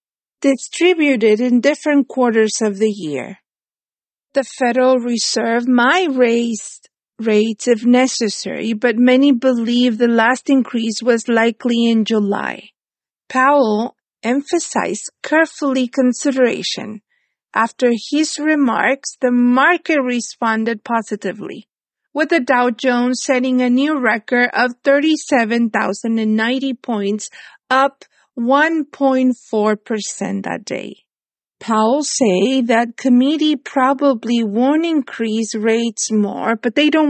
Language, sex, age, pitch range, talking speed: English, female, 50-69, 225-275 Hz, 100 wpm